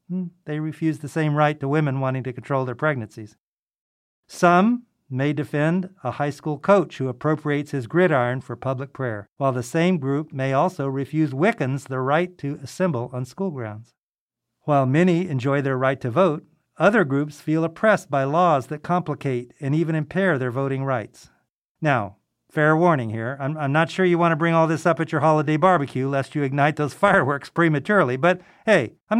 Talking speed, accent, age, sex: 185 wpm, American, 50-69, male